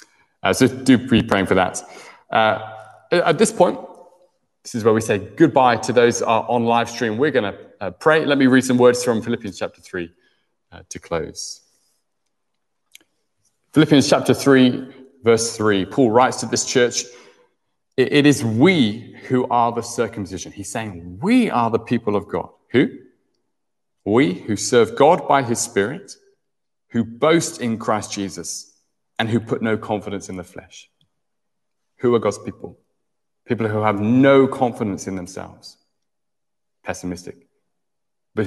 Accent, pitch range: British, 100-130 Hz